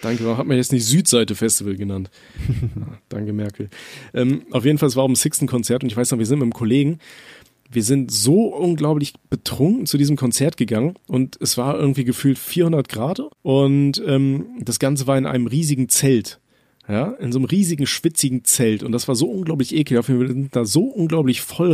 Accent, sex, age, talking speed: German, male, 40-59, 200 wpm